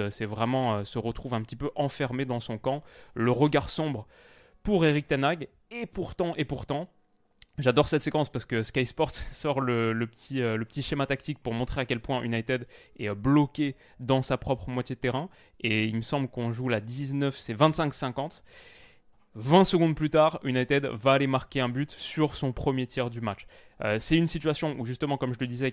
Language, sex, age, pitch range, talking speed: French, male, 20-39, 120-140 Hz, 200 wpm